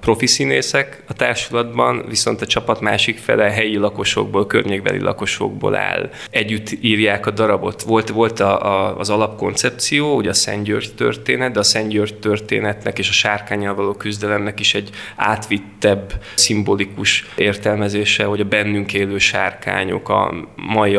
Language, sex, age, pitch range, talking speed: Hungarian, male, 20-39, 100-115 Hz, 145 wpm